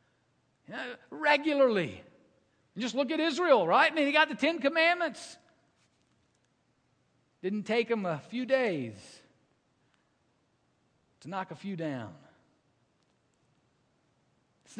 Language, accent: English, American